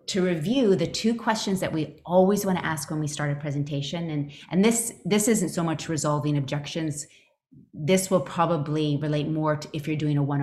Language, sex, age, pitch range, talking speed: English, female, 30-49, 145-185 Hz, 205 wpm